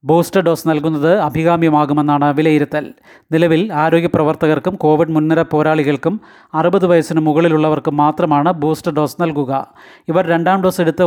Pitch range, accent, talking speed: 150-165 Hz, native, 115 wpm